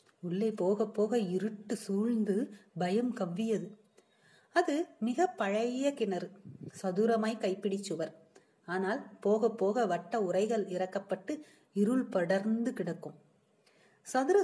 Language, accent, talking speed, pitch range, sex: Tamil, native, 95 wpm, 190-240 Hz, female